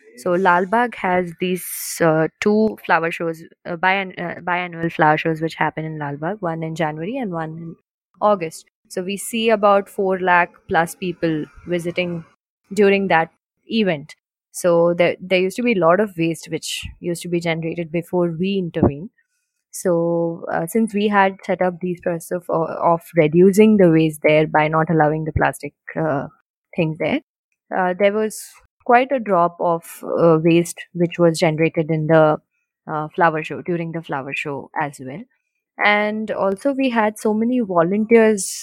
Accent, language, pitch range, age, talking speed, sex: Indian, English, 165-195 Hz, 20-39, 170 wpm, female